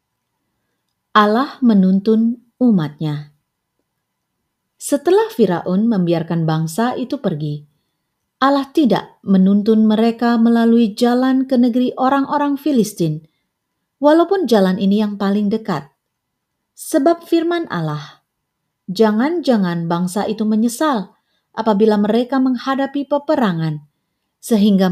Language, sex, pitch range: Indonesian, female, 180-265 Hz